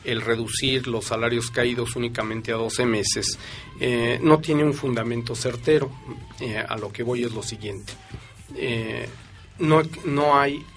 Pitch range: 110-130 Hz